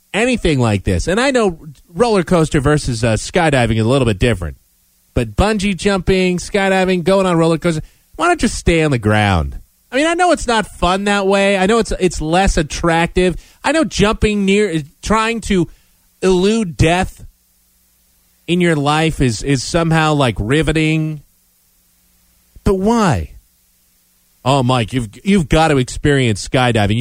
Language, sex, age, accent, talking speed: English, male, 30-49, American, 160 wpm